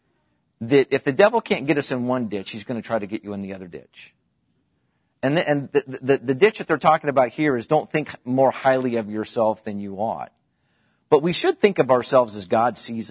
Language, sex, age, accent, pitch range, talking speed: English, male, 50-69, American, 110-145 Hz, 240 wpm